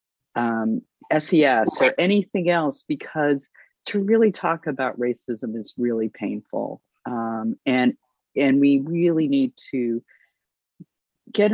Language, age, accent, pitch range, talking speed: English, 40-59, American, 120-160 Hz, 115 wpm